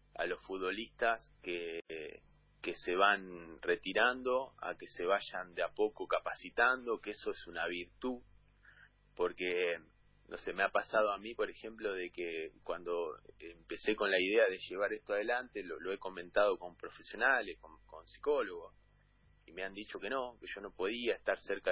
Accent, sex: Argentinian, male